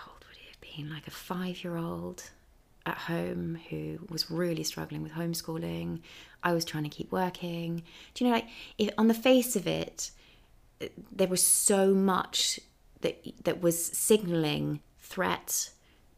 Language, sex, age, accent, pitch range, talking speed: English, female, 30-49, British, 135-170 Hz, 130 wpm